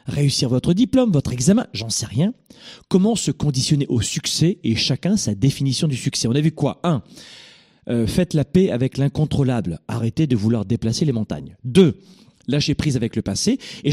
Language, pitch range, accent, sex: French, 135-205 Hz, French, male